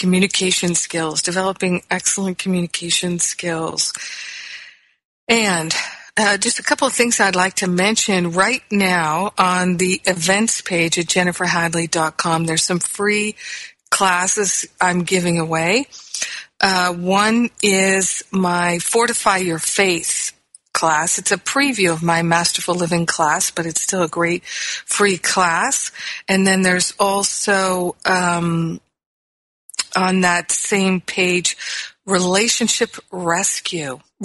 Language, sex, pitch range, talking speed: English, female, 175-195 Hz, 115 wpm